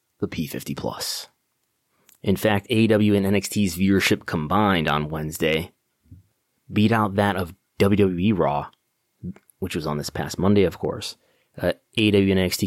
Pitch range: 85-105 Hz